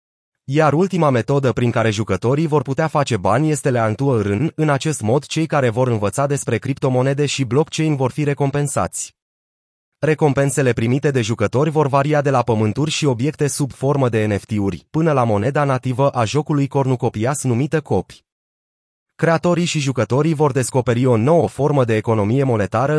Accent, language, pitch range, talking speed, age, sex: native, Romanian, 120-150 Hz, 160 wpm, 30-49, male